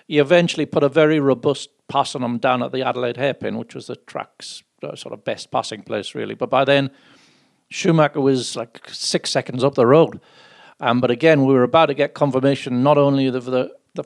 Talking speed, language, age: 215 wpm, English, 50-69